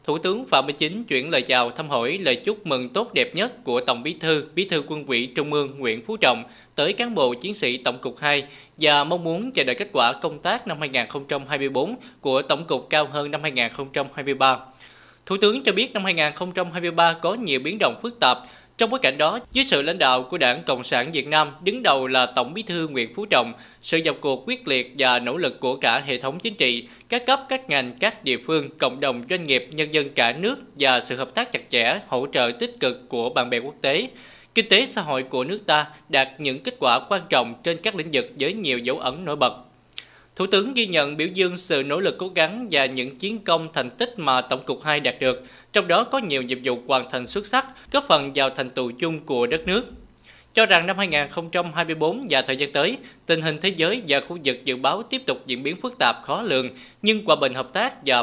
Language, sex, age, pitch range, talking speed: Vietnamese, male, 20-39, 135-185 Hz, 235 wpm